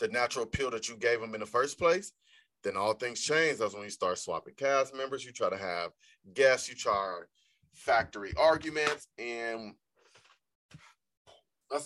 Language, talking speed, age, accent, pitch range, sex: English, 165 wpm, 20-39, American, 100-135 Hz, male